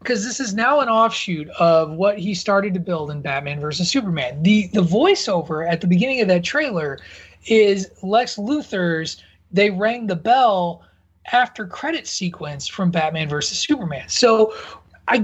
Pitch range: 150-220 Hz